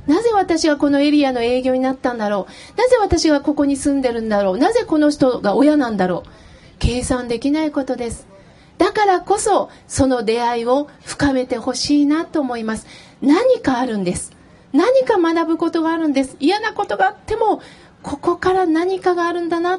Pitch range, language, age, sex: 245-335 Hz, Japanese, 40-59, female